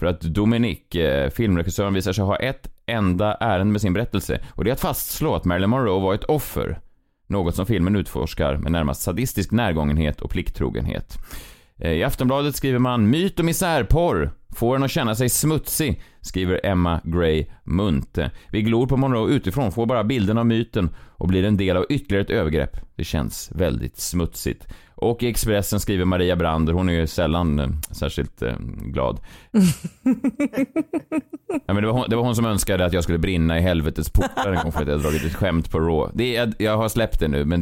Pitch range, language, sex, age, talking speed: 80-115 Hz, Swedish, male, 30-49, 190 wpm